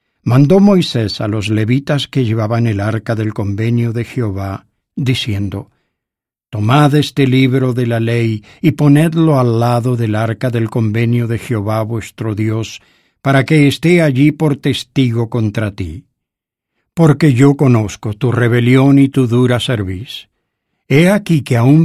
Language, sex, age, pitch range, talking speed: English, male, 60-79, 110-140 Hz, 145 wpm